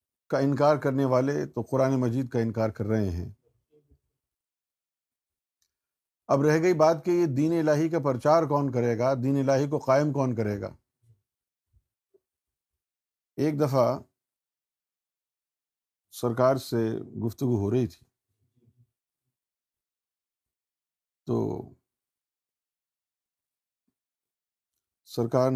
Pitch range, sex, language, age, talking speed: 110-140 Hz, male, Urdu, 50-69, 100 wpm